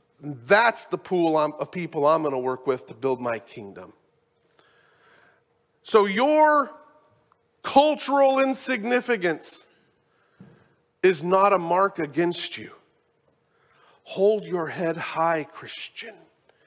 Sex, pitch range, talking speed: male, 160-235 Hz, 110 wpm